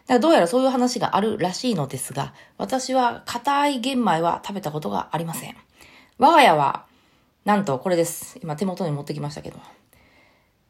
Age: 20-39